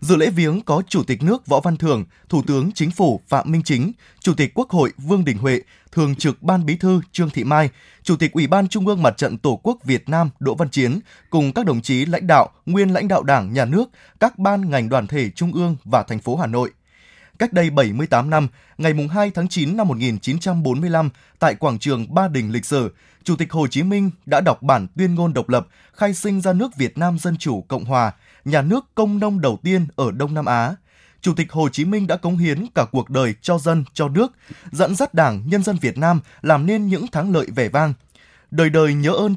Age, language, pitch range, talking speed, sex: 20-39, Vietnamese, 130-180 Hz, 235 wpm, male